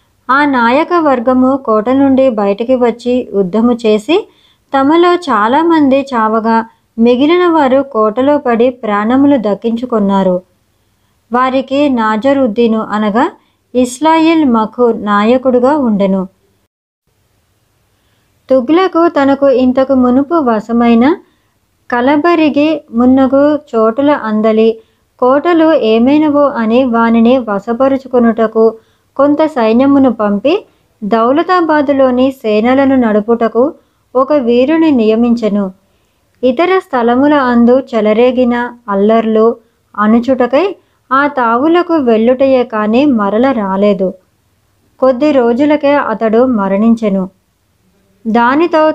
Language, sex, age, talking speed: Telugu, male, 20-39, 80 wpm